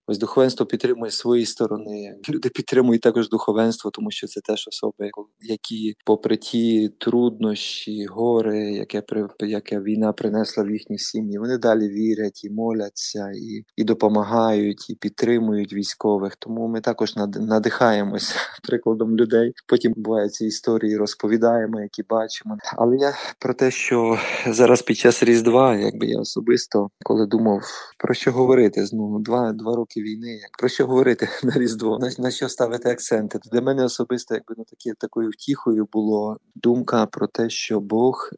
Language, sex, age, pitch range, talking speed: Ukrainian, male, 20-39, 105-115 Hz, 150 wpm